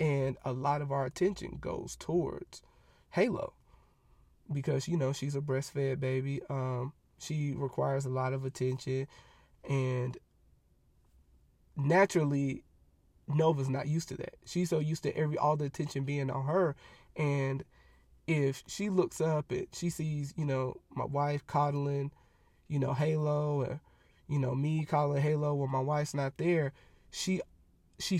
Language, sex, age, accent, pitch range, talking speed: English, male, 20-39, American, 130-155 Hz, 150 wpm